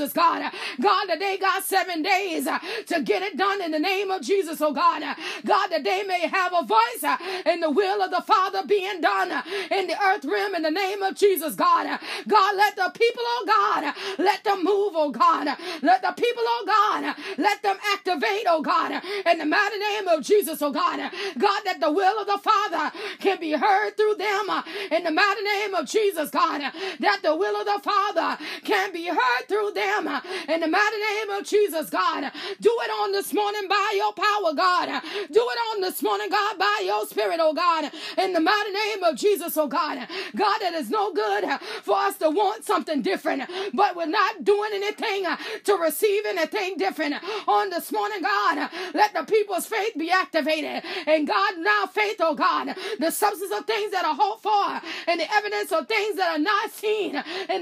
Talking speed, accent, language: 200 wpm, American, English